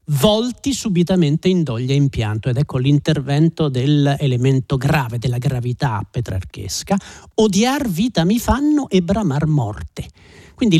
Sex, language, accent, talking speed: male, Italian, native, 130 wpm